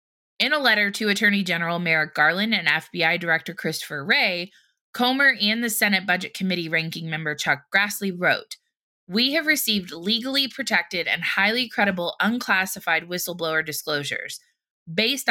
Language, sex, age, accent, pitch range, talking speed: English, female, 20-39, American, 170-230 Hz, 140 wpm